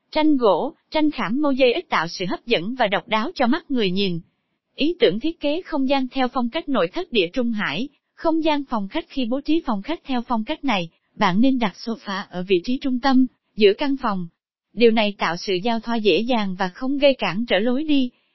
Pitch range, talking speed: 210-275 Hz, 235 wpm